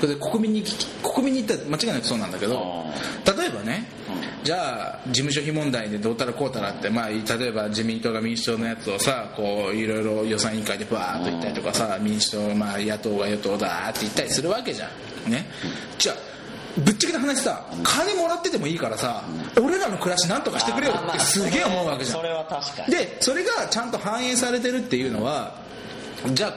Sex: male